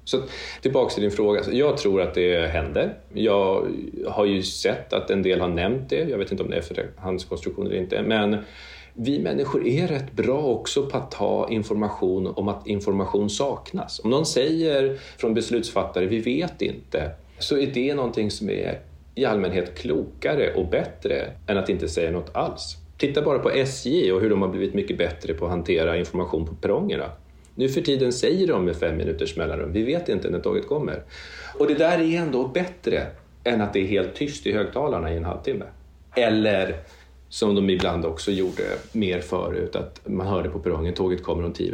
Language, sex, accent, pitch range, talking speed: Swedish, male, native, 80-115 Hz, 200 wpm